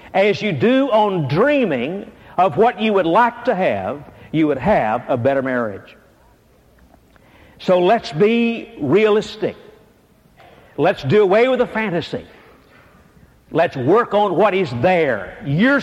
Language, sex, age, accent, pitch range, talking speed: English, male, 60-79, American, 175-240 Hz, 135 wpm